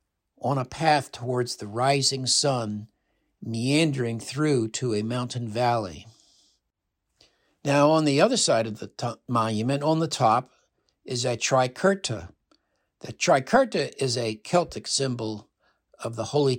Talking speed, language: 130 wpm, English